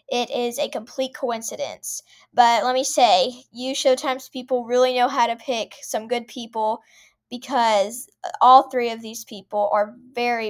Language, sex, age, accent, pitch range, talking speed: English, female, 10-29, American, 230-270 Hz, 160 wpm